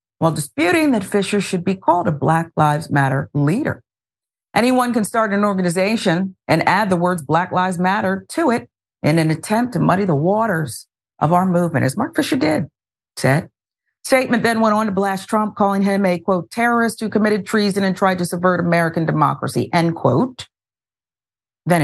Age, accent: 50-69, American